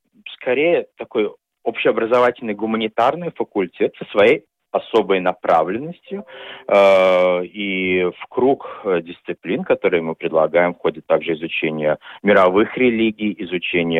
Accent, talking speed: native, 100 wpm